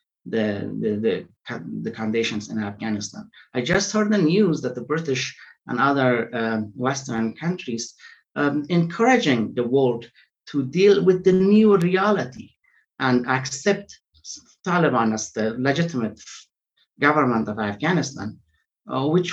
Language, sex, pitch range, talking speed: English, male, 125-185 Hz, 125 wpm